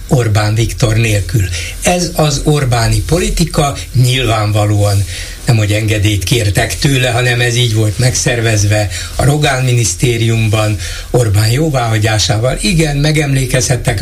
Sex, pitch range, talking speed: male, 110-150 Hz, 105 wpm